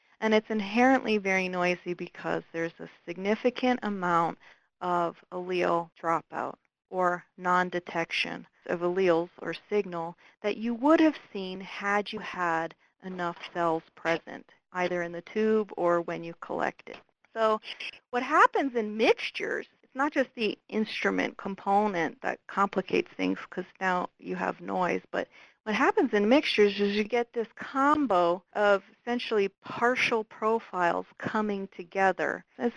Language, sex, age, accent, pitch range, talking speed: English, female, 40-59, American, 180-230 Hz, 135 wpm